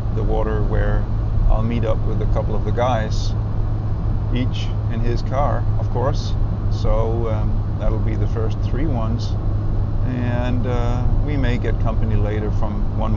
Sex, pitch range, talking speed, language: male, 85-105 Hz, 160 wpm, English